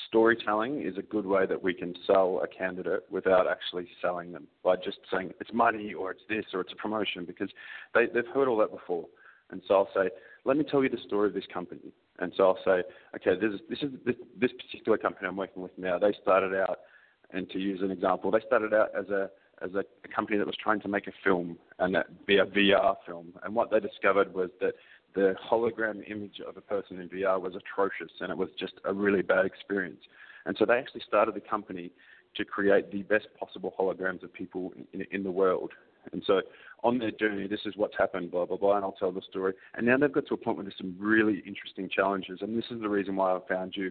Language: English